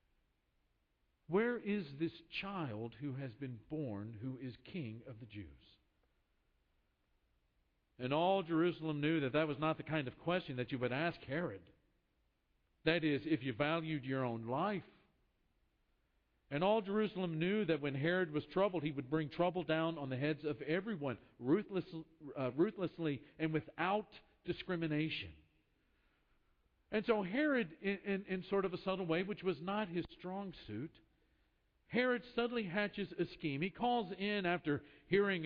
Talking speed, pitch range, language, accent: 155 wpm, 140-195 Hz, English, American